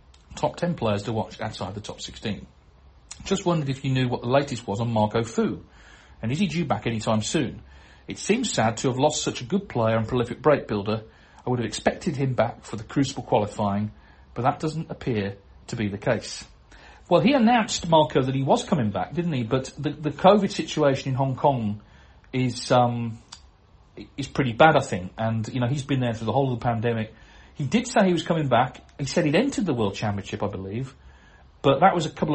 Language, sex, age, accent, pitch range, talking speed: English, male, 40-59, British, 105-140 Hz, 220 wpm